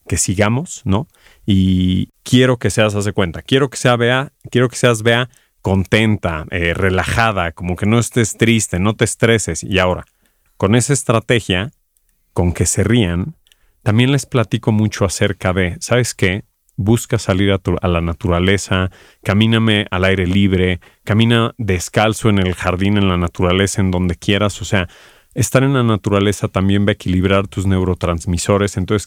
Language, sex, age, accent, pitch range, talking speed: Spanish, male, 40-59, Mexican, 95-115 Hz, 165 wpm